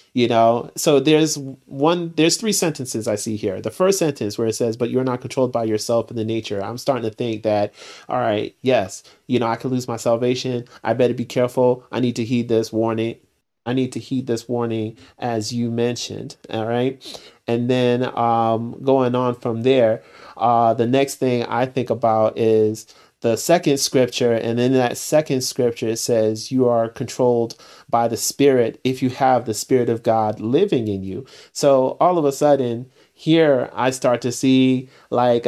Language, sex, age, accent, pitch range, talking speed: English, male, 30-49, American, 115-130 Hz, 195 wpm